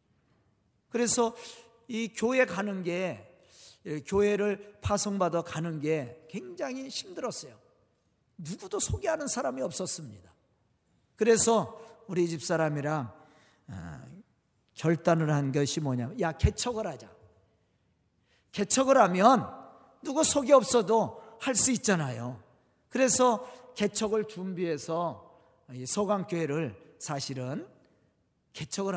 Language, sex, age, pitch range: Korean, male, 40-59, 150-225 Hz